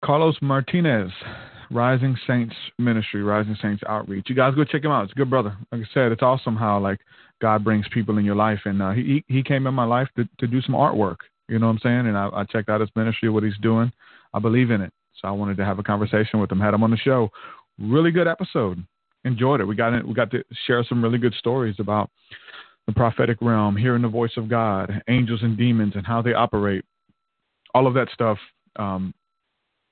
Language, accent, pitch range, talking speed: English, American, 105-130 Hz, 230 wpm